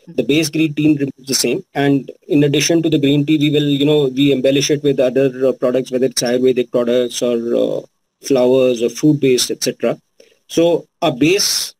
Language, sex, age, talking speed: English, male, 20-39, 200 wpm